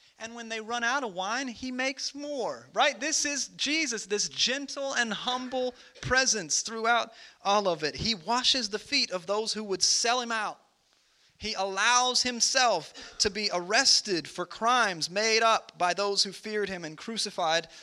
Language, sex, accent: English, male, American